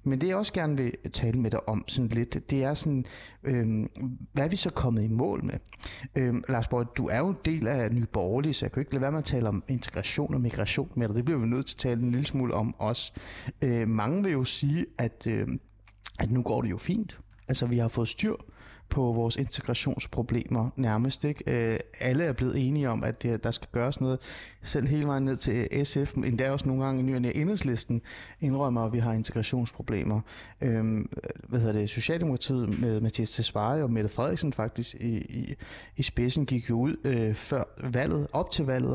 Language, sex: Danish, male